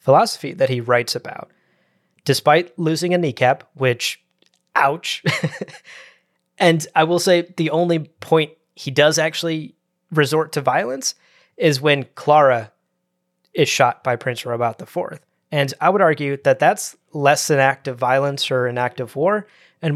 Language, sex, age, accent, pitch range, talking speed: English, male, 20-39, American, 125-160 Hz, 150 wpm